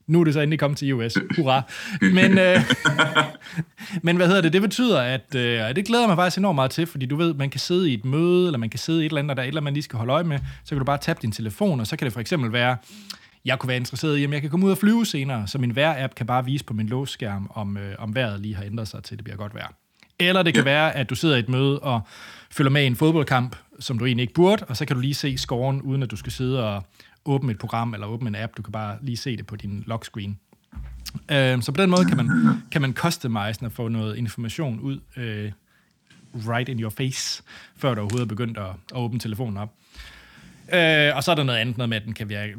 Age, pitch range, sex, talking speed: 30-49, 115-155 Hz, male, 280 wpm